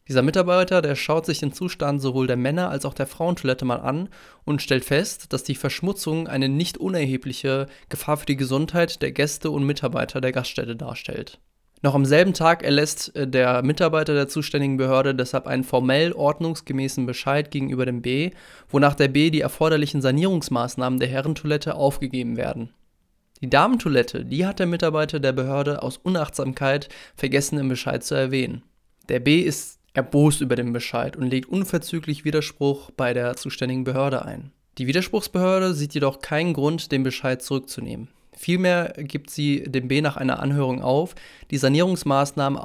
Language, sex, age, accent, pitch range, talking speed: German, male, 20-39, German, 130-155 Hz, 165 wpm